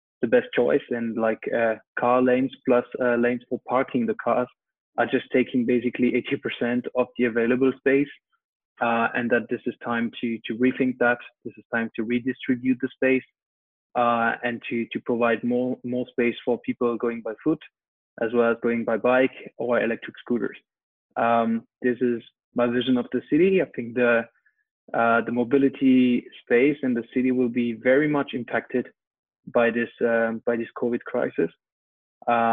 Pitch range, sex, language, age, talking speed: 115-130 Hz, male, English, 20-39, 175 wpm